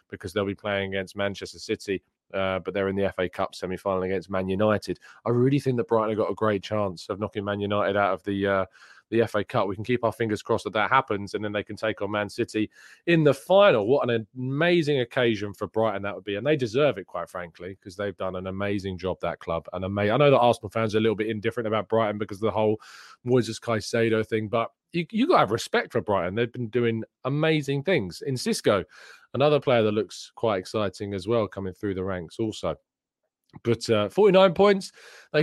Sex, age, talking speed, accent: male, 20-39, 230 wpm, British